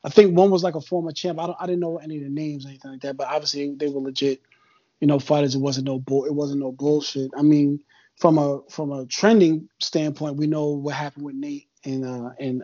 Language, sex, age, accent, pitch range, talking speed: English, male, 20-39, American, 140-160 Hz, 260 wpm